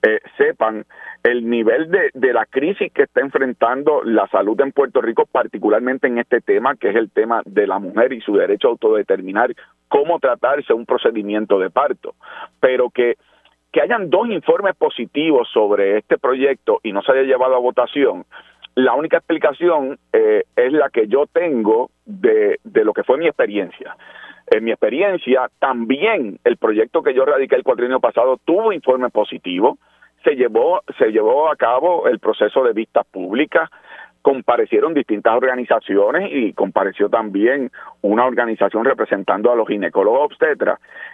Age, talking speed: 40-59, 160 wpm